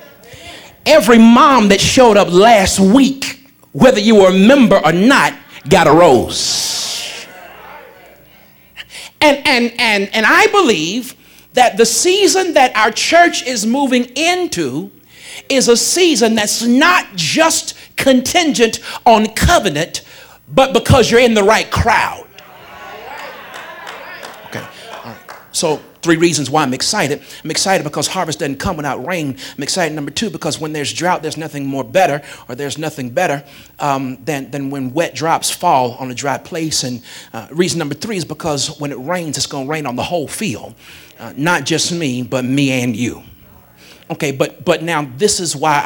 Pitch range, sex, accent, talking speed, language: 145-235 Hz, male, American, 160 wpm, English